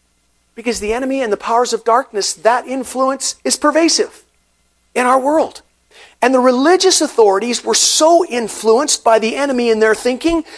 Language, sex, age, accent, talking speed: English, male, 40-59, American, 160 wpm